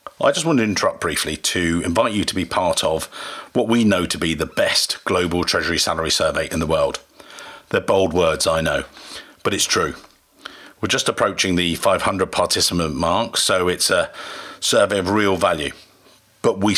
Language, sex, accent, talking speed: English, male, British, 180 wpm